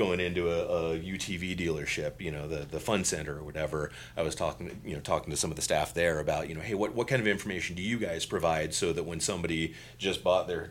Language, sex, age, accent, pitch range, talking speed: English, male, 30-49, American, 80-105 Hz, 265 wpm